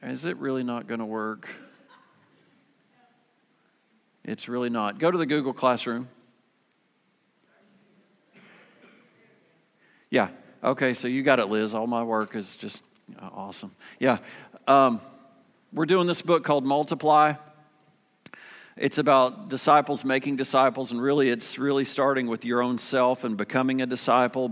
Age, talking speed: 50-69, 130 wpm